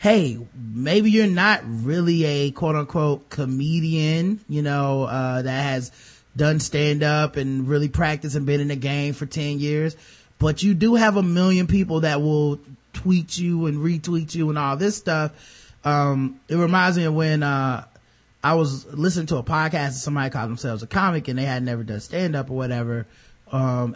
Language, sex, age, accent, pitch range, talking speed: English, male, 20-39, American, 135-175 Hz, 180 wpm